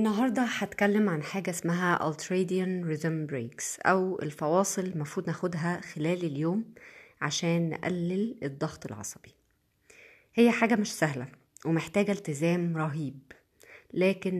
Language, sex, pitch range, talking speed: Arabic, female, 155-195 Hz, 110 wpm